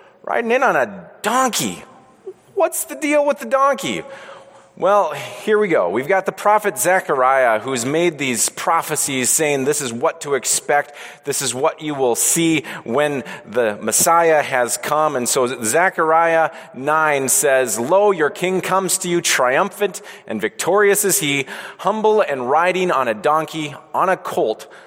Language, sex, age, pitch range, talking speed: English, male, 30-49, 145-210 Hz, 160 wpm